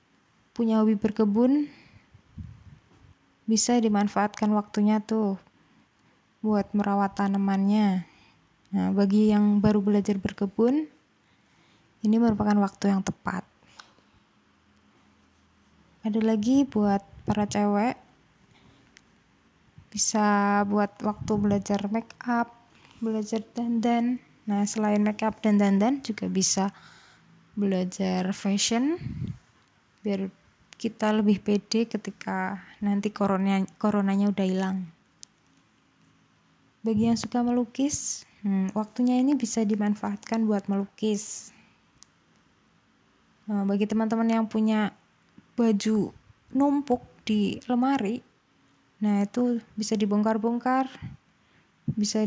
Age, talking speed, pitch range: 20-39, 90 wpm, 200-225 Hz